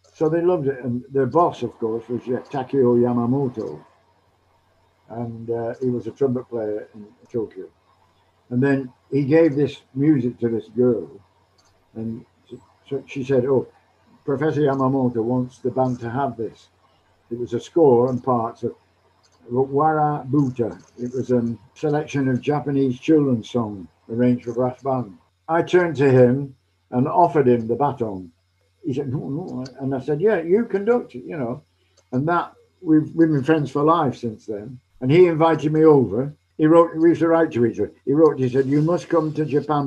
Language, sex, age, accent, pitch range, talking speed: English, male, 60-79, British, 115-145 Hz, 180 wpm